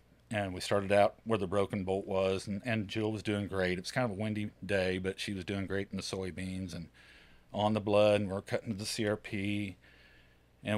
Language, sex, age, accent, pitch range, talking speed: English, male, 40-59, American, 90-105 Hz, 225 wpm